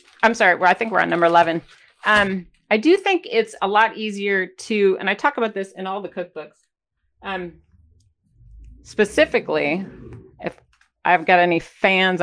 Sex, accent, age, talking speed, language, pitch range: female, American, 30-49, 160 wpm, English, 175-240 Hz